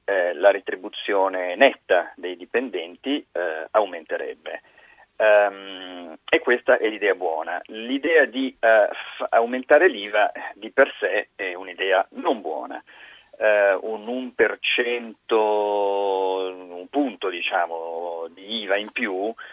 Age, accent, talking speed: 40-59, native, 115 wpm